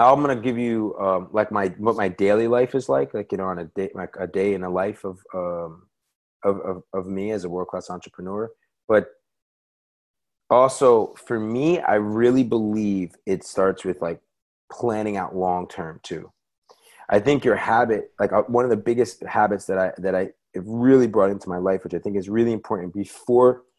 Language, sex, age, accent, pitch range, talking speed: English, male, 30-49, American, 95-120 Hz, 200 wpm